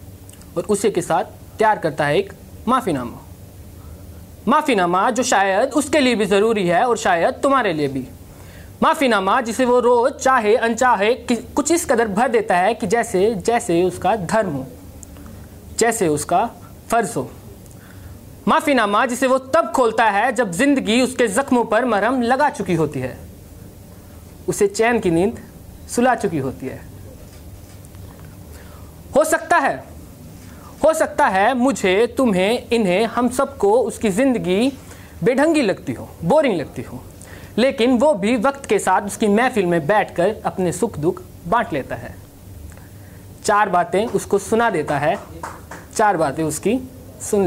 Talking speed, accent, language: 145 wpm, native, Hindi